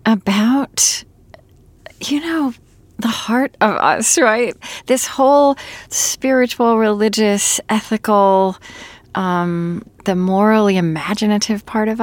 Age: 40-59